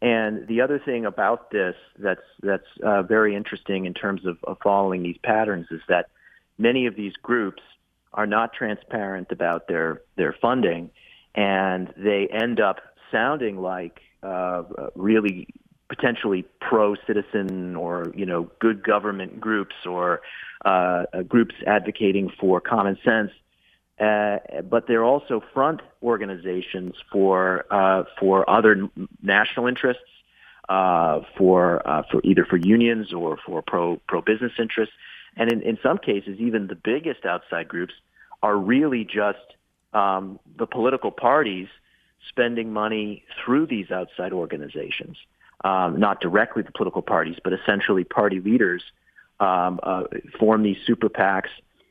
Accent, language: American, English